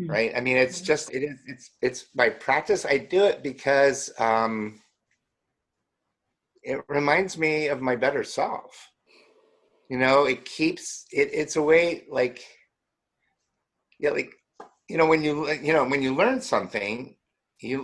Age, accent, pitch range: 50-69, American, 125-200 Hz